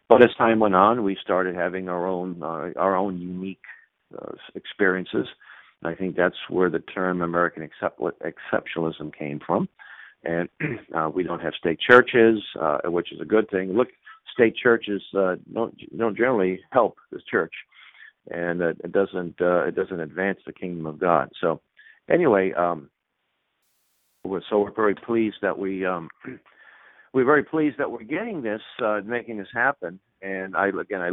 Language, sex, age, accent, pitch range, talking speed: English, male, 50-69, American, 85-105 Hz, 170 wpm